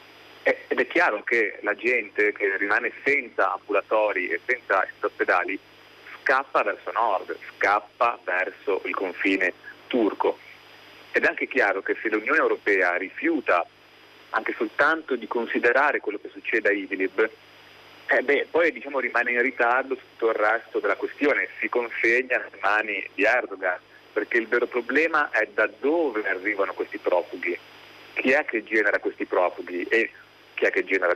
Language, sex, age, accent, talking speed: Italian, male, 40-59, native, 150 wpm